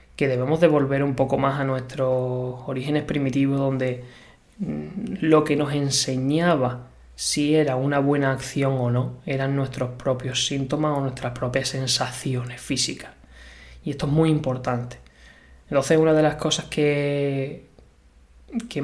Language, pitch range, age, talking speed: Spanish, 130-155 Hz, 20-39, 135 wpm